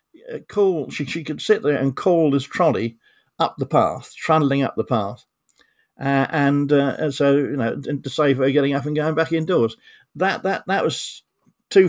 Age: 50-69